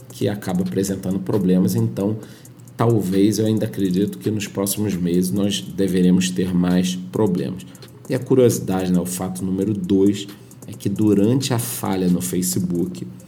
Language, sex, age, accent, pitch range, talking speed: Portuguese, male, 40-59, Brazilian, 95-110 Hz, 150 wpm